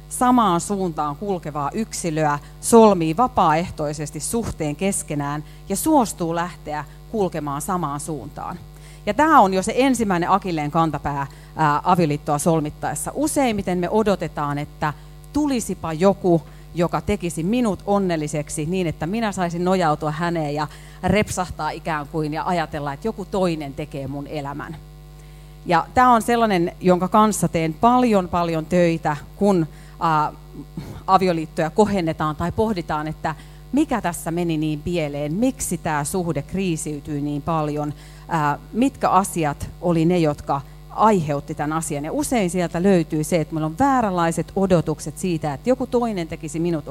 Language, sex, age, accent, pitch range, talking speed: Finnish, female, 30-49, native, 150-190 Hz, 130 wpm